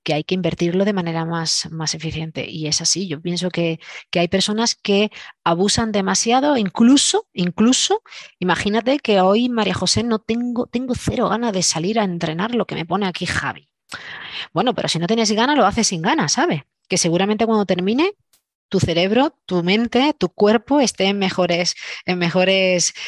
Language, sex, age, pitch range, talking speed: Spanish, female, 20-39, 170-225 Hz, 180 wpm